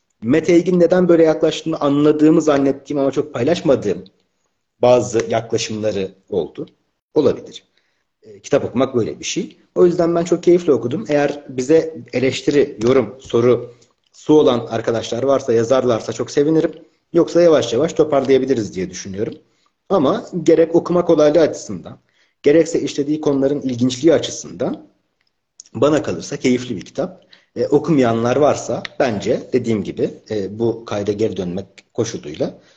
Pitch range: 115-155 Hz